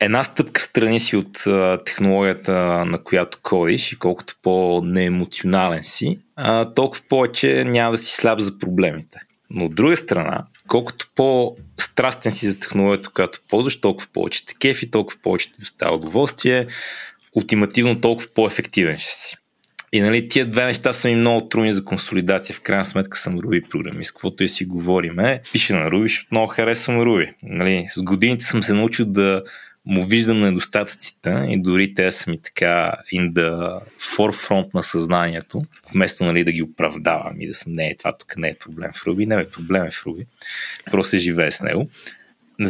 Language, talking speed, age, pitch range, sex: Bulgarian, 180 wpm, 30-49, 95-115 Hz, male